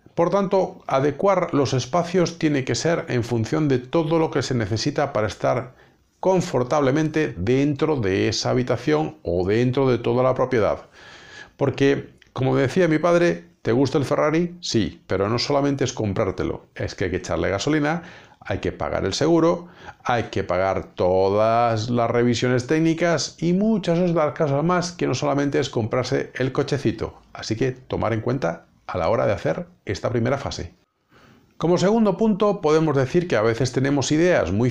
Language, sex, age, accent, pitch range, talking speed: Spanish, male, 50-69, Spanish, 115-165 Hz, 170 wpm